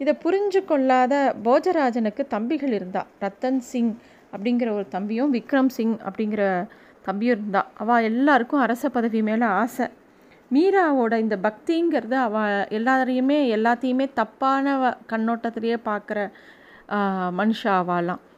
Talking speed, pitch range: 105 wpm, 210-255 Hz